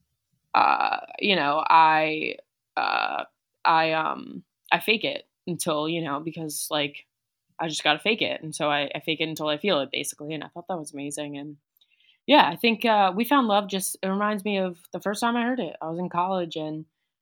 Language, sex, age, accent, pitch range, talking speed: English, female, 20-39, American, 155-190 Hz, 215 wpm